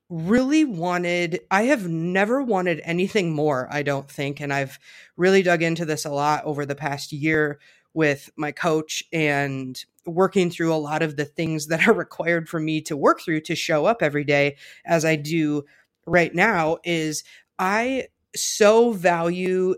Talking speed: 170 wpm